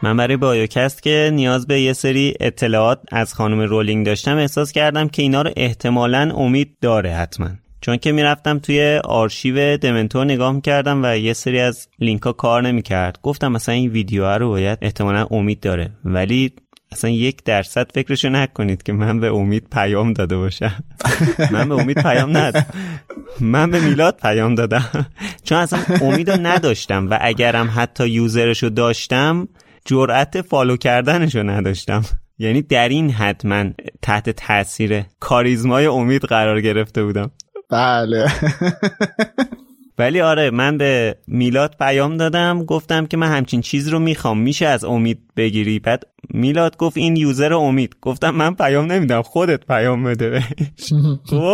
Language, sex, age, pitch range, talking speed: Persian, male, 20-39, 115-150 Hz, 150 wpm